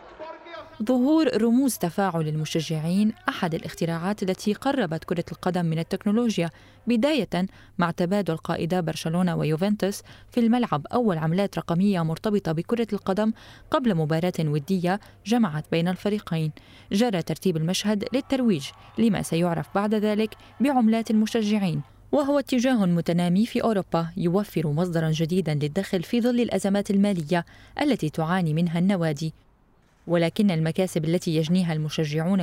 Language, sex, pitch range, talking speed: Arabic, female, 165-215 Hz, 120 wpm